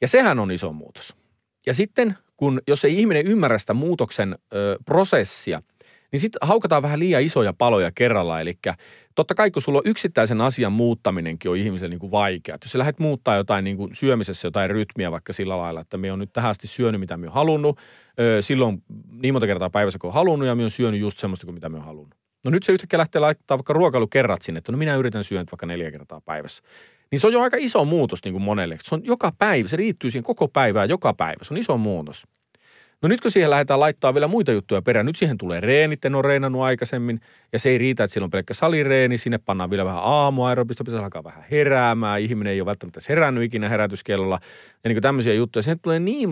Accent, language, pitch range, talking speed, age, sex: native, Finnish, 100-145 Hz, 225 wpm, 30-49, male